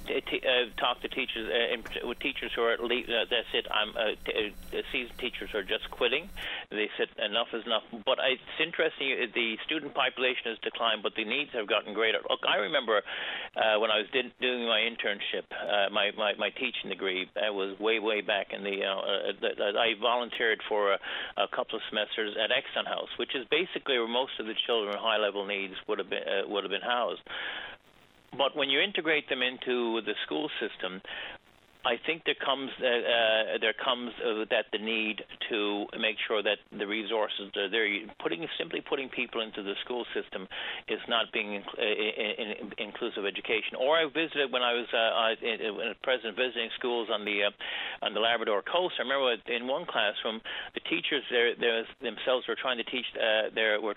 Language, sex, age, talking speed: English, male, 50-69, 195 wpm